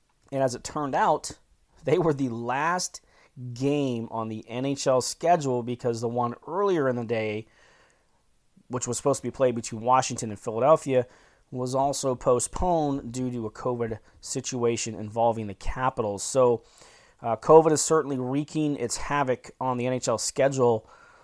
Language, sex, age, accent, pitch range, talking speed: English, male, 30-49, American, 115-140 Hz, 155 wpm